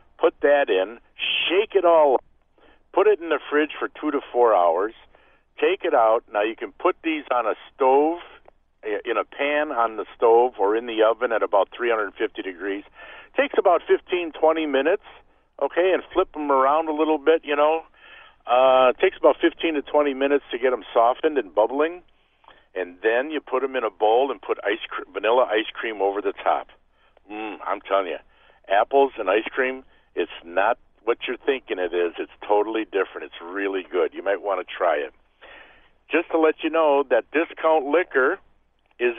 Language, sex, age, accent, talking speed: English, male, 50-69, American, 190 wpm